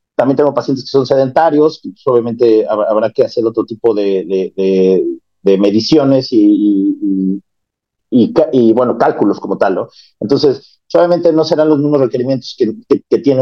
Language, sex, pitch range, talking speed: Spanish, male, 115-155 Hz, 175 wpm